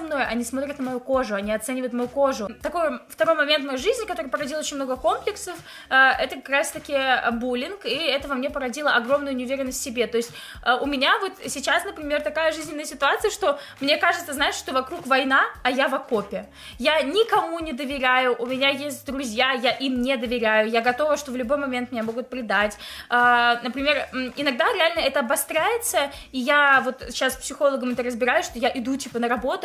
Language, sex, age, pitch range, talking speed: Russian, female, 20-39, 245-290 Hz, 190 wpm